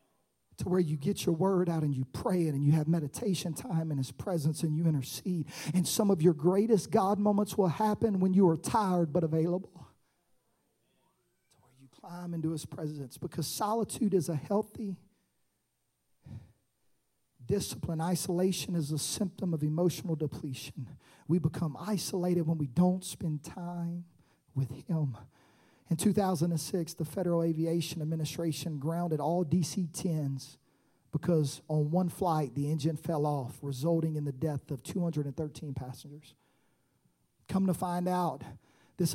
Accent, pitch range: American, 145-180 Hz